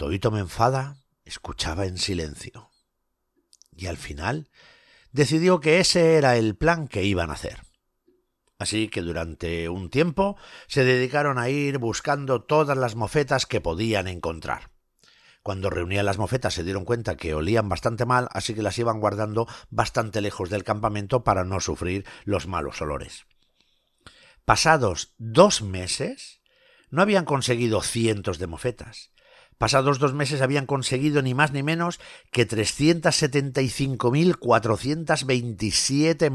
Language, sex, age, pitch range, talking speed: Spanish, male, 60-79, 100-140 Hz, 135 wpm